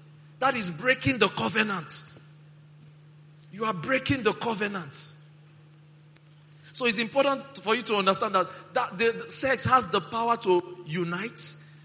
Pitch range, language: 150-200 Hz, English